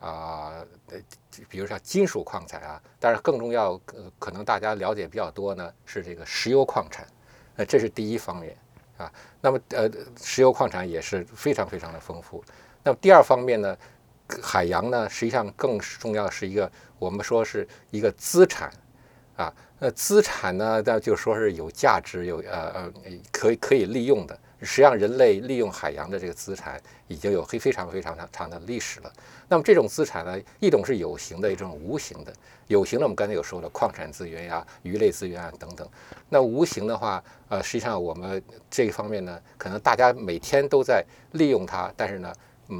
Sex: male